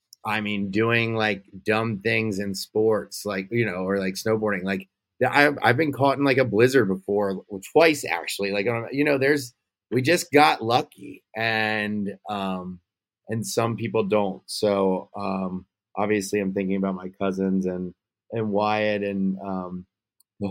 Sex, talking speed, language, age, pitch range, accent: male, 165 wpm, English, 30-49, 100-115 Hz, American